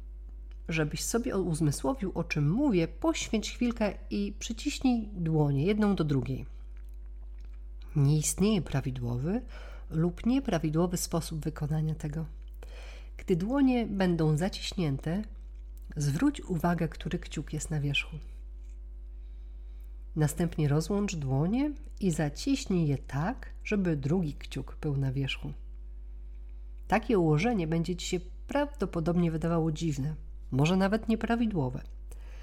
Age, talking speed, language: 40-59, 105 wpm, Polish